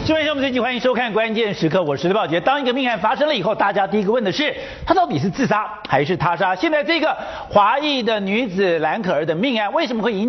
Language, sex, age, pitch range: Chinese, male, 50-69, 200-295 Hz